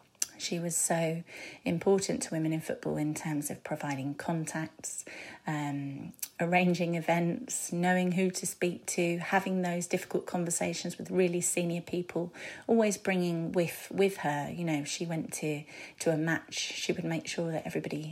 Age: 30-49